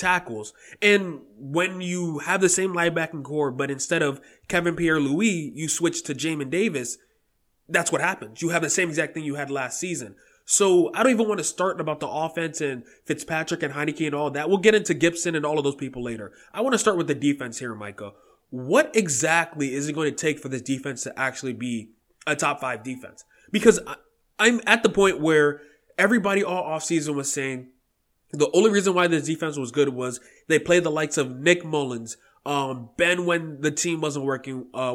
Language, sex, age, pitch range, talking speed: English, male, 20-39, 135-170 Hz, 205 wpm